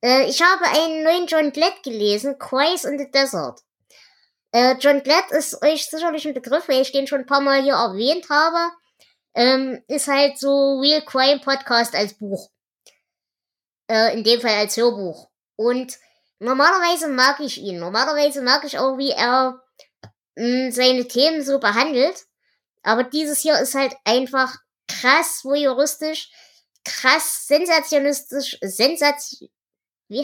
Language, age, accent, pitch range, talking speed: German, 20-39, German, 235-280 Hz, 135 wpm